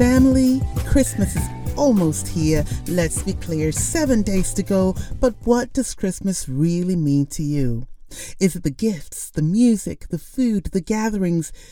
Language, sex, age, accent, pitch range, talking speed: English, female, 40-59, American, 140-190 Hz, 155 wpm